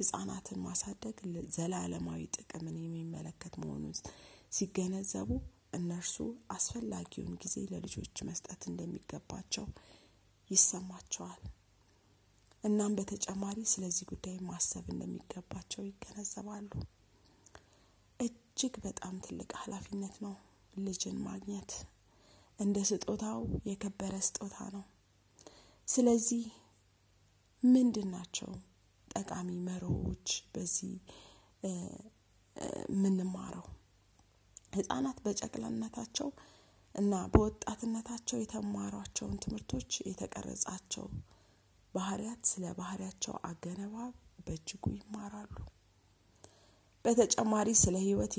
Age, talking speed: 20-39, 70 wpm